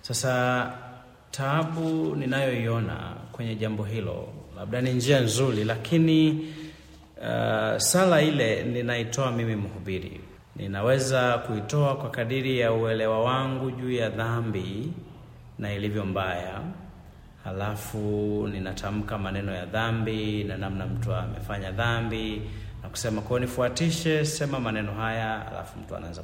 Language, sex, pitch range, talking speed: Swahili, male, 110-135 Hz, 110 wpm